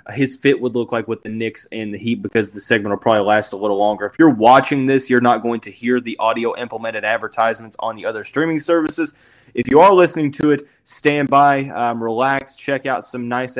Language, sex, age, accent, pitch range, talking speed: English, male, 20-39, American, 120-145 Hz, 230 wpm